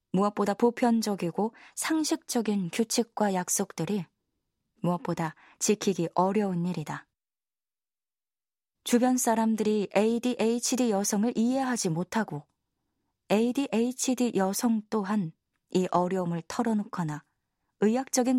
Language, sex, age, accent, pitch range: Korean, female, 20-39, native, 185-230 Hz